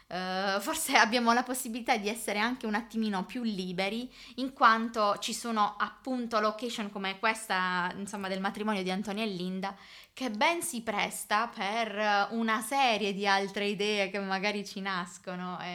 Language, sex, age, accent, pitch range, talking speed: Italian, female, 20-39, native, 195-240 Hz, 155 wpm